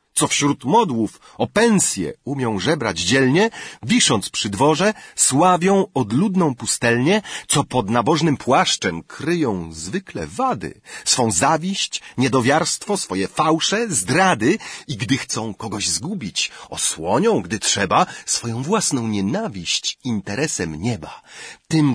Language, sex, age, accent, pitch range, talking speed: Ukrainian, male, 40-59, Polish, 115-185 Hz, 110 wpm